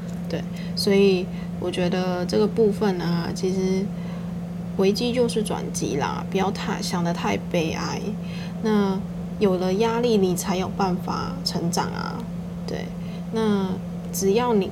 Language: Chinese